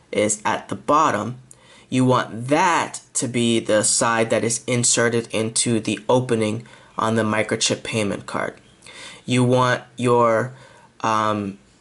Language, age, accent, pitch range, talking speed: English, 20-39, American, 115-135 Hz, 130 wpm